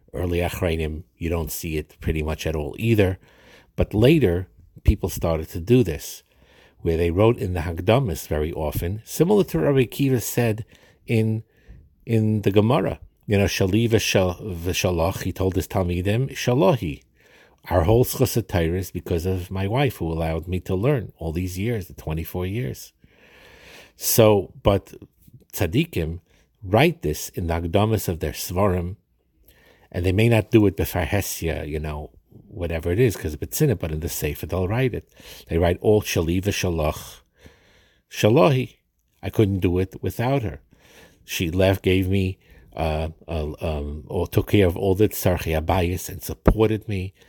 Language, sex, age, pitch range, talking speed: English, male, 50-69, 80-105 Hz, 160 wpm